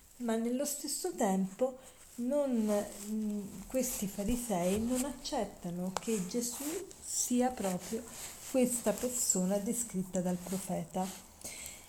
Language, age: Italian, 50-69